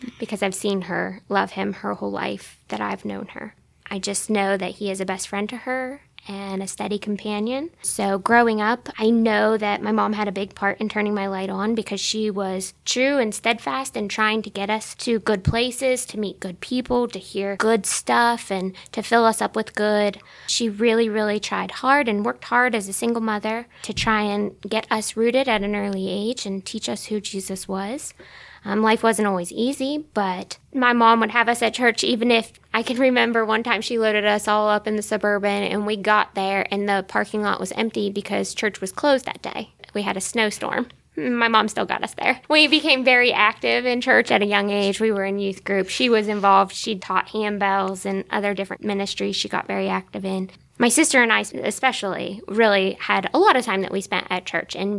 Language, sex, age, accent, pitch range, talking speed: English, female, 10-29, American, 200-230 Hz, 220 wpm